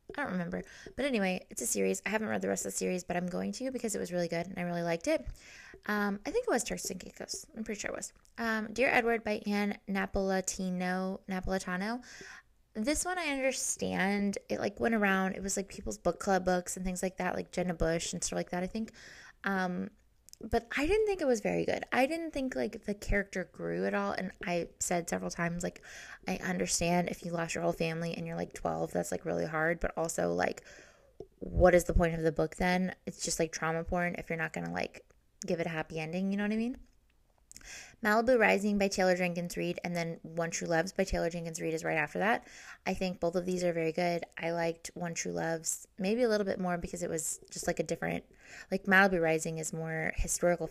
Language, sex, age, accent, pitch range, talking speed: English, female, 20-39, American, 165-200 Hz, 235 wpm